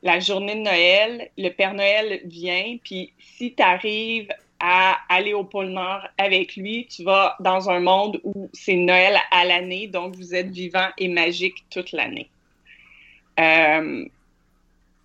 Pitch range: 170-200 Hz